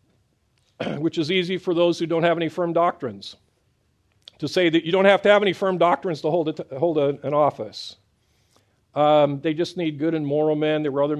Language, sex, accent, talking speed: English, male, American, 215 wpm